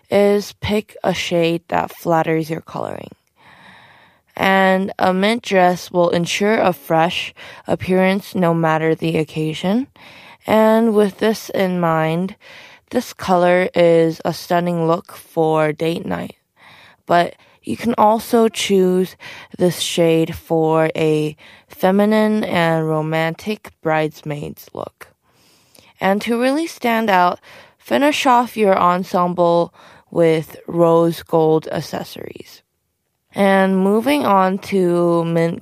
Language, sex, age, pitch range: Korean, female, 20-39, 165-215 Hz